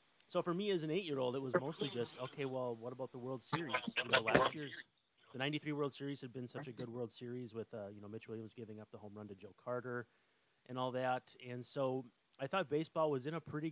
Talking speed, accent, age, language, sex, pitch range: 255 wpm, American, 30-49, English, male, 110-140 Hz